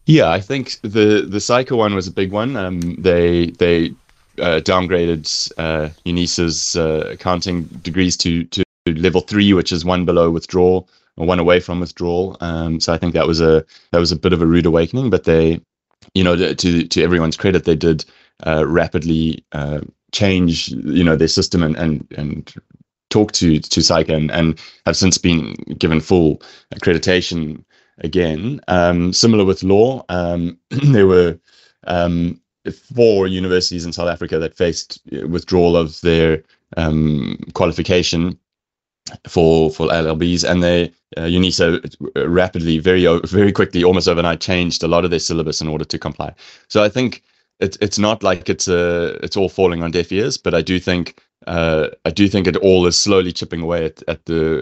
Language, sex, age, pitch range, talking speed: English, male, 20-39, 80-90 Hz, 175 wpm